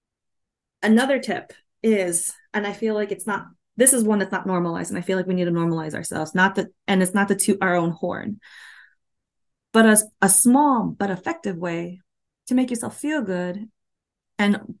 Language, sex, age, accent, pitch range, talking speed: English, female, 20-39, American, 195-235 Hz, 190 wpm